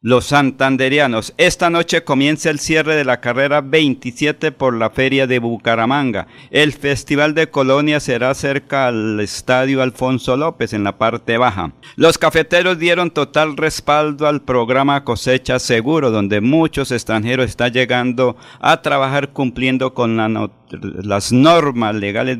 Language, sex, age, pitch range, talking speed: Spanish, male, 50-69, 115-145 Hz, 135 wpm